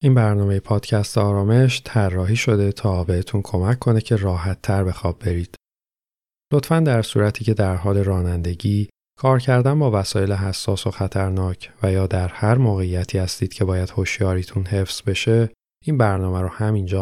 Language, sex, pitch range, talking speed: Persian, male, 95-115 Hz, 160 wpm